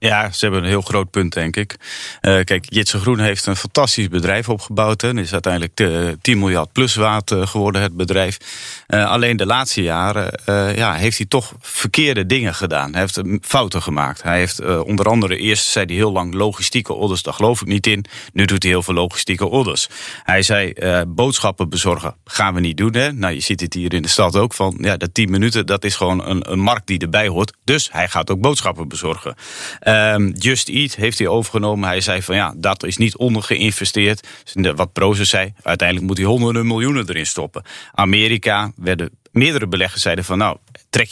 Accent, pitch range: Dutch, 95-115 Hz